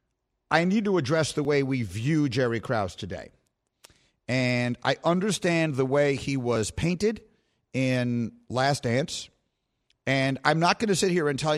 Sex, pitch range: male, 120-175 Hz